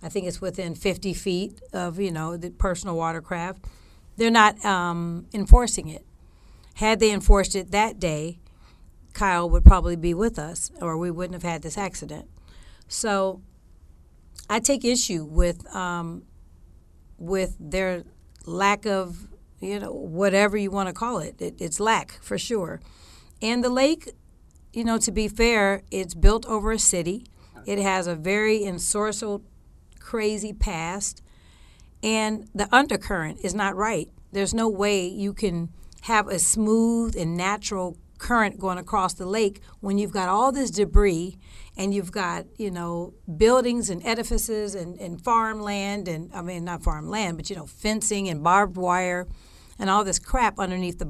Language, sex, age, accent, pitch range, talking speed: English, female, 40-59, American, 175-215 Hz, 160 wpm